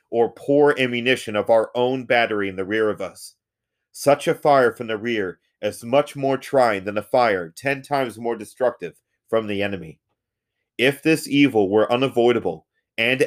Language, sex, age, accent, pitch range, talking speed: English, male, 30-49, American, 115-135 Hz, 170 wpm